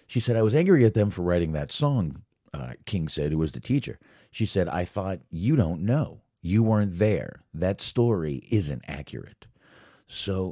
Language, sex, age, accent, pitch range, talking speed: English, male, 40-59, American, 75-95 Hz, 190 wpm